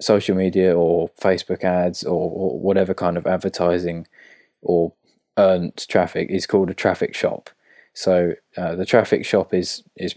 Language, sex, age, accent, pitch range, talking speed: English, male, 20-39, British, 90-95 Hz, 155 wpm